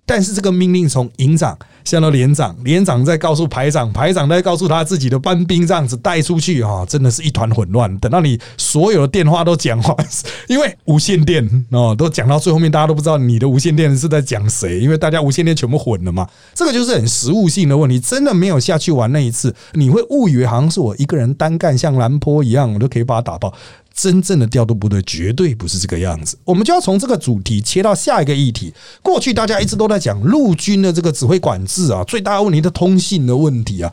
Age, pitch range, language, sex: 30-49, 125-180 Hz, Chinese, male